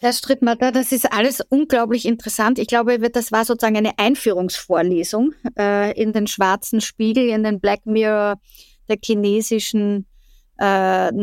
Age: 50-69